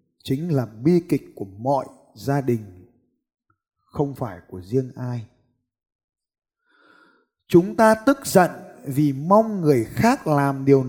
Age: 20-39